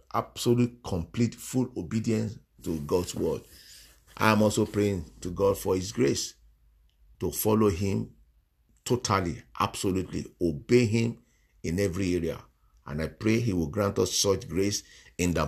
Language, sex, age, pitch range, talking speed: English, male, 50-69, 85-115 Hz, 145 wpm